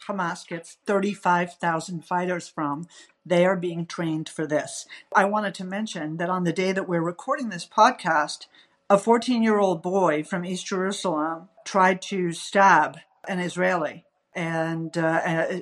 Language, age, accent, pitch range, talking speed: English, 50-69, American, 175-220 Hz, 140 wpm